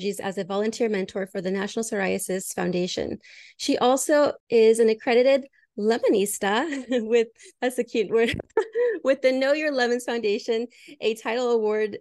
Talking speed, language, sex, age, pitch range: 145 wpm, English, female, 30-49, 205-255 Hz